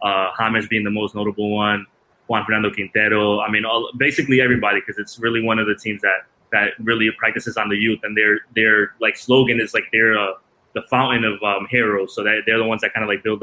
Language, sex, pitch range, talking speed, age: English, male, 110-130 Hz, 235 wpm, 20-39